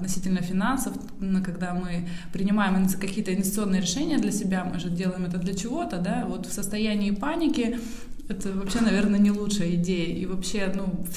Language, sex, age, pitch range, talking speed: Russian, female, 20-39, 180-210 Hz, 165 wpm